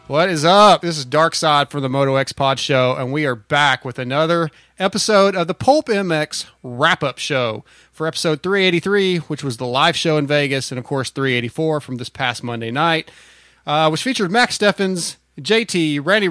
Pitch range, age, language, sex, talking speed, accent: 130-170 Hz, 30-49, English, male, 190 wpm, American